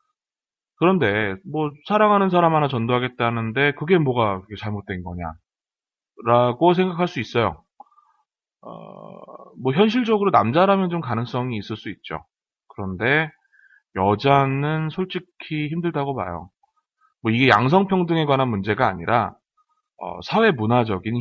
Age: 30-49